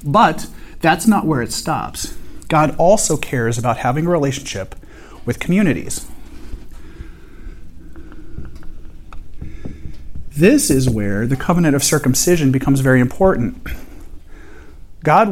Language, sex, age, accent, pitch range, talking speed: English, male, 40-59, American, 120-160 Hz, 100 wpm